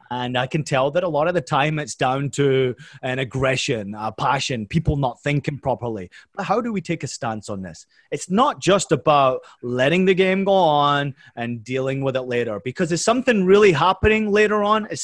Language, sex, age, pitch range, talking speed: English, male, 30-49, 130-175 Hz, 210 wpm